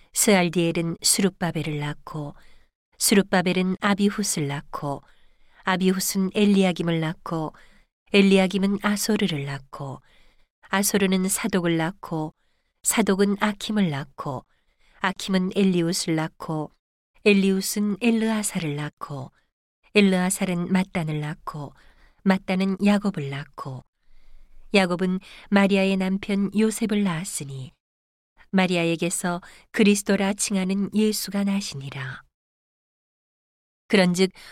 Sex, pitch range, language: female, 155-200 Hz, Korean